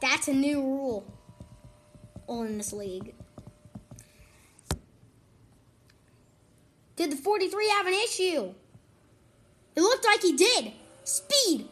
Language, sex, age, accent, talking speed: English, female, 20-39, American, 95 wpm